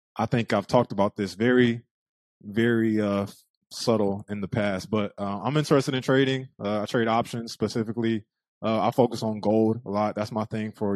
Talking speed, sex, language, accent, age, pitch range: 190 wpm, male, English, American, 20-39, 105-135 Hz